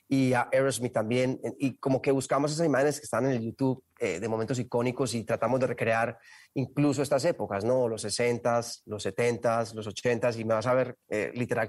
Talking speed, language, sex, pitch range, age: 205 wpm, Spanish, male, 115-130 Hz, 30-49